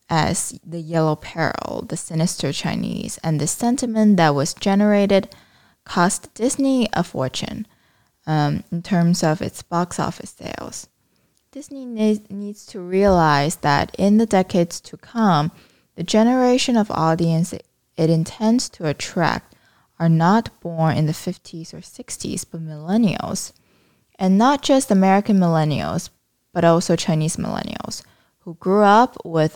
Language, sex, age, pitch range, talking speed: English, female, 20-39, 160-205 Hz, 135 wpm